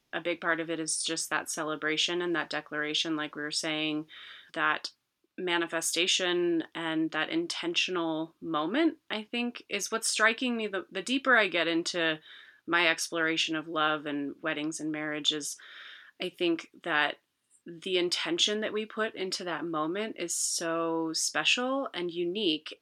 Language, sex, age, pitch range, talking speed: English, female, 30-49, 165-195 Hz, 155 wpm